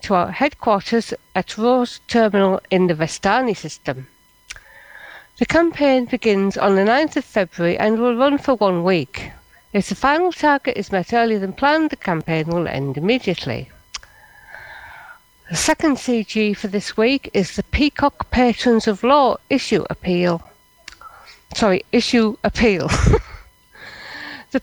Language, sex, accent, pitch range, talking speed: English, female, British, 180-255 Hz, 135 wpm